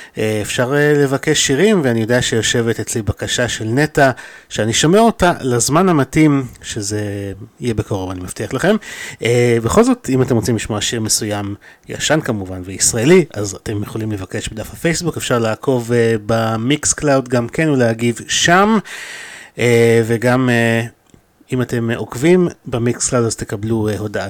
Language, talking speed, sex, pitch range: Hebrew, 135 wpm, male, 110-140 Hz